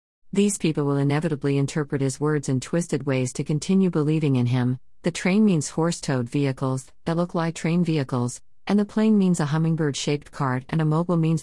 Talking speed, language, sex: 190 wpm, Arabic, female